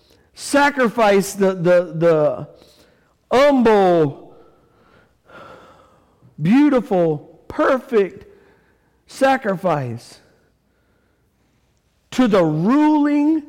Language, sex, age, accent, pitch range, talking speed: English, male, 50-69, American, 145-200 Hz, 50 wpm